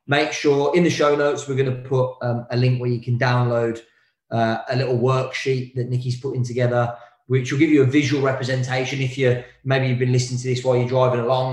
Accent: British